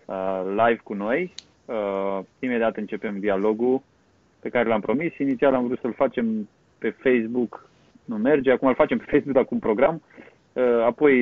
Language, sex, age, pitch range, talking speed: Romanian, male, 30-49, 100-125 Hz, 150 wpm